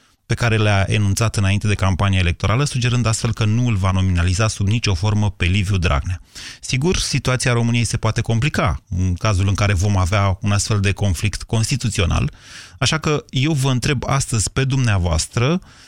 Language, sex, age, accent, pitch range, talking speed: Romanian, male, 30-49, native, 100-130 Hz, 175 wpm